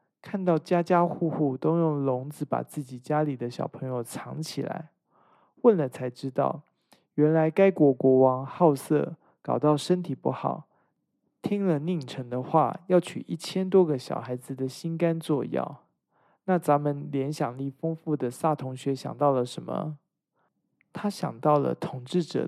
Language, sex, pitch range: Chinese, male, 130-170 Hz